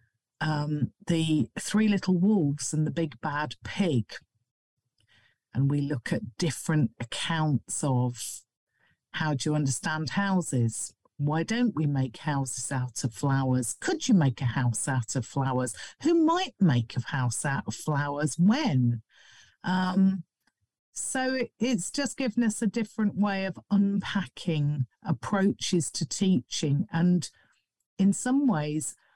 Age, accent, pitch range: 50-69, British, 145-215 Hz